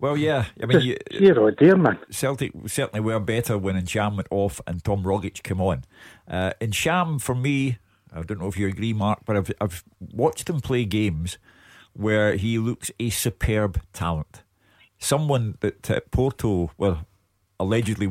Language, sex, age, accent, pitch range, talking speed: English, male, 50-69, British, 95-115 Hz, 160 wpm